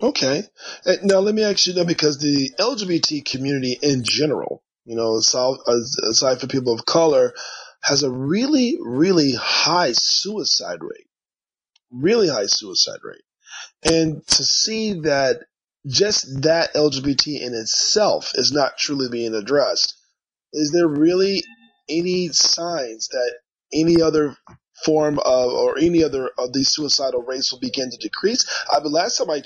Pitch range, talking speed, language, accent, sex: 135-190 Hz, 150 wpm, English, American, male